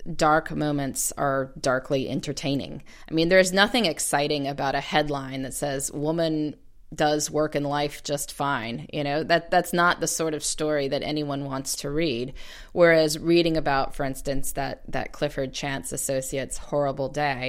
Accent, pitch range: American, 140-160 Hz